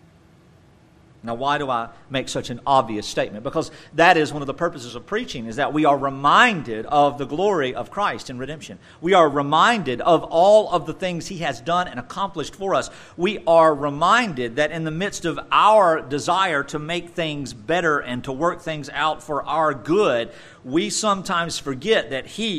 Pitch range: 135-165 Hz